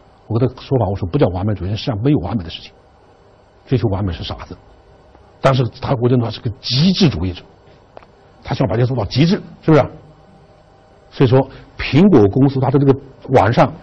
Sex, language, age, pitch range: male, Chinese, 60-79, 100-135 Hz